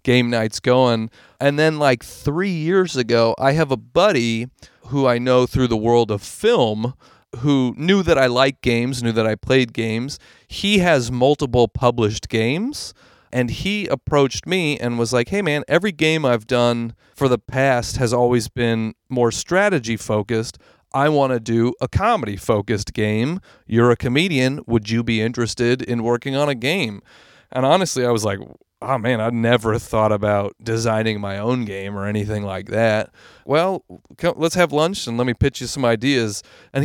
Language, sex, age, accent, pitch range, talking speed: English, male, 40-59, American, 115-140 Hz, 180 wpm